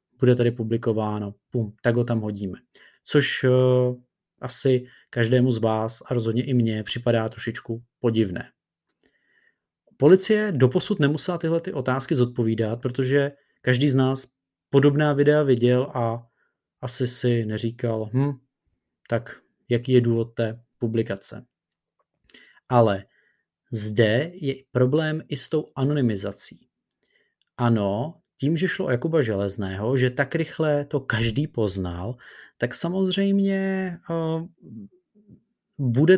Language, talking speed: Czech, 115 wpm